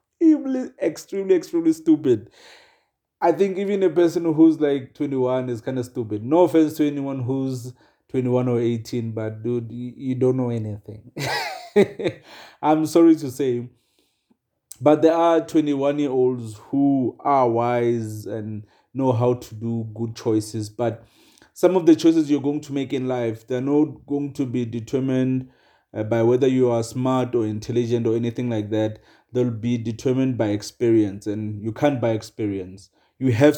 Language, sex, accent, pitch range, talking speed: English, male, South African, 115-150 Hz, 160 wpm